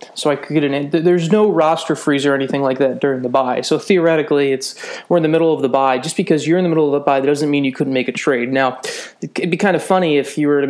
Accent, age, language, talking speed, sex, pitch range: American, 20-39, English, 305 wpm, male, 135-160 Hz